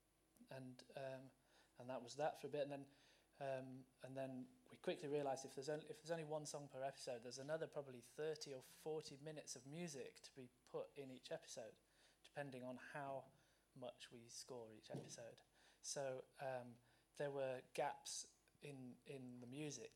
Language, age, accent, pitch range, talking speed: English, 30-49, British, 120-145 Hz, 170 wpm